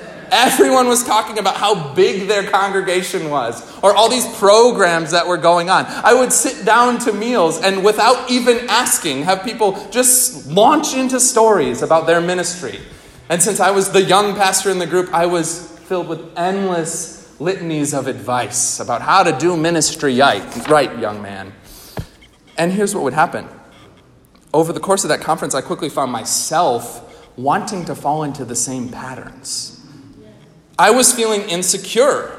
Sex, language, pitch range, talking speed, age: male, English, 160-225 Hz, 165 wpm, 30-49